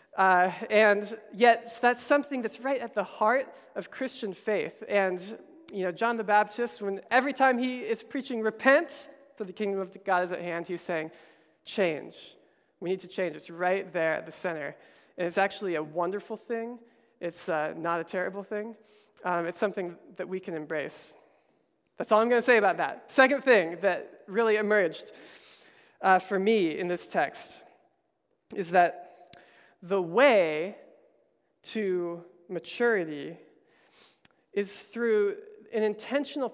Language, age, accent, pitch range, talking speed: English, 20-39, American, 180-235 Hz, 155 wpm